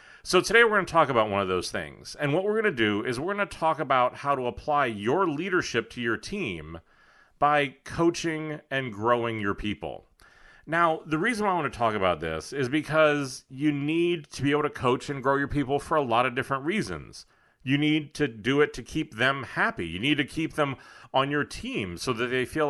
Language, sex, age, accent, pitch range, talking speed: English, male, 40-59, American, 115-155 Hz, 225 wpm